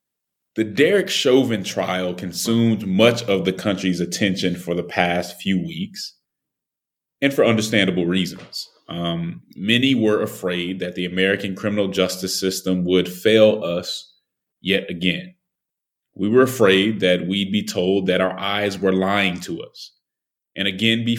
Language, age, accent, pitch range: English, 30-49, American, 90-115 Hz